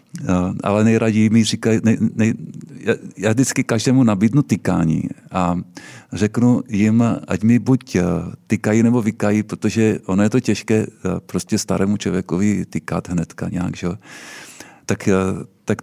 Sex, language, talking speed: male, Czech, 130 wpm